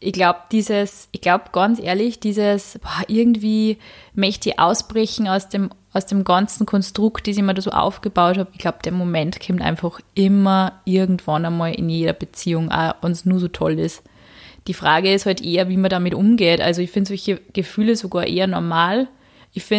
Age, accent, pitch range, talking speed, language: 20-39, German, 185-215 Hz, 185 wpm, German